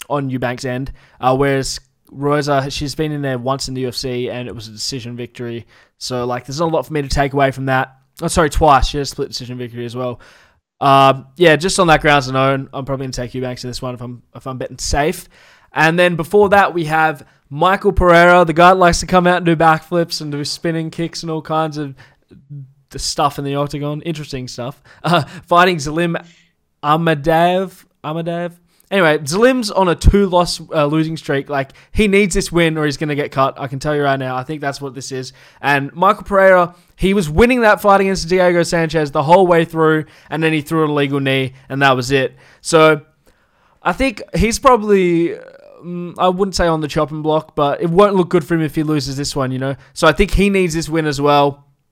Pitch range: 135-175 Hz